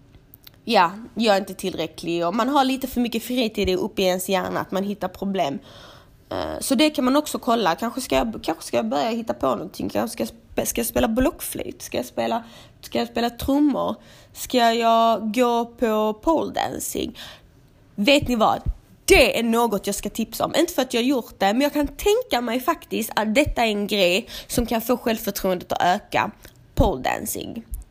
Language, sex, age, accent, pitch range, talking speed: Swedish, female, 20-39, native, 200-265 Hz, 185 wpm